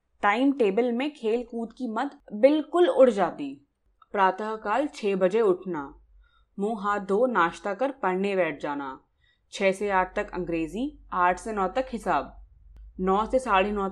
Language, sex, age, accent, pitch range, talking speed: Hindi, female, 20-39, native, 185-240 Hz, 125 wpm